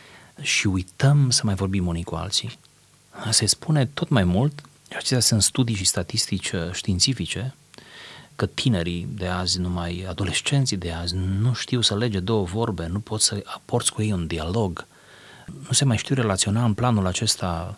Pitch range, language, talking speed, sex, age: 90-120 Hz, Romanian, 170 wpm, male, 30-49